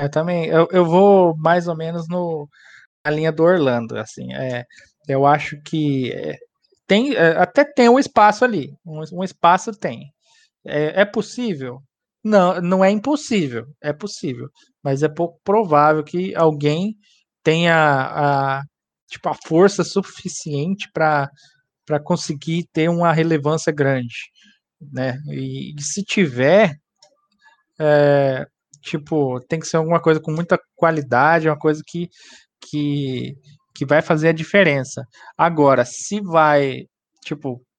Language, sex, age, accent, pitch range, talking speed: Portuguese, male, 20-39, Brazilian, 145-185 Hz, 140 wpm